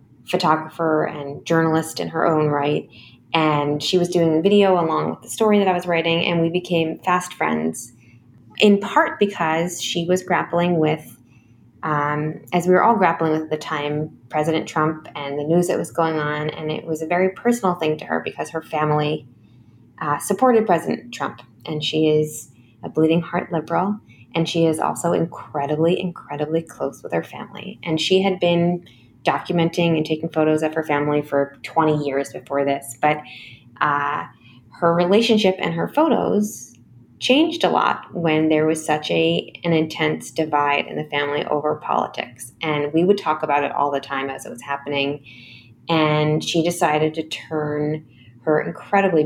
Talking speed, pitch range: 175 wpm, 140-170 Hz